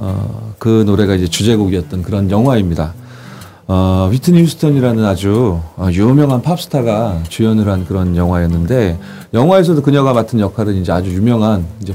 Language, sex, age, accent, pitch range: Korean, male, 30-49, native, 95-120 Hz